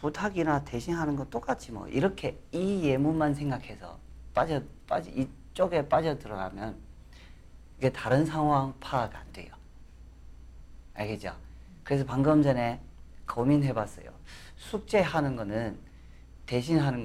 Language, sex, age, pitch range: Korean, male, 40-59, 90-145 Hz